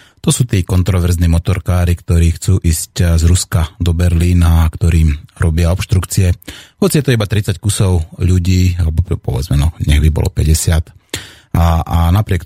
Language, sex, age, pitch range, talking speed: Slovak, male, 30-49, 85-100 Hz, 155 wpm